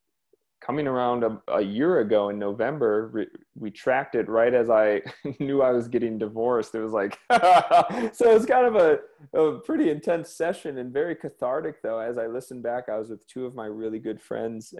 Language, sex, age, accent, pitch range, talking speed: English, male, 30-49, American, 105-130 Hz, 200 wpm